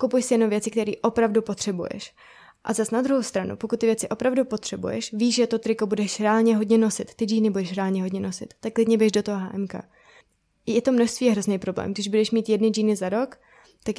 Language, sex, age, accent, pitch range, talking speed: Czech, female, 20-39, native, 205-230 Hz, 220 wpm